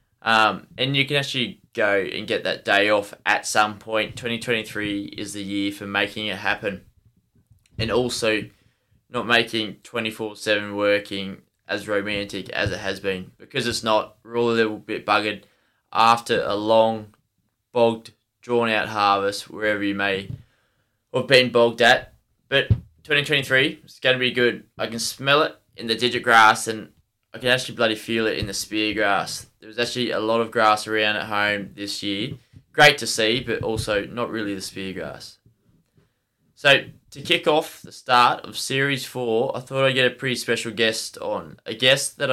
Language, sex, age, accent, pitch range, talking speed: English, male, 20-39, Australian, 105-120 Hz, 180 wpm